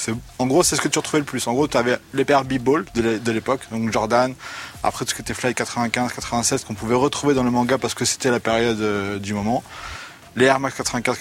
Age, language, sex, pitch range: 20-39, French, male, 110-135 Hz